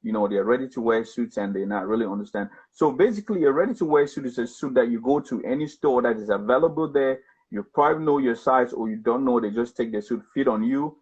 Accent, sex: Malaysian, male